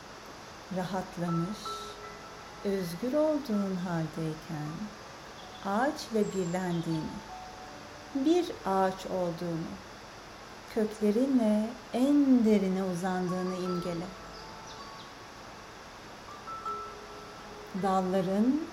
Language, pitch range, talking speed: Turkish, 175-225 Hz, 50 wpm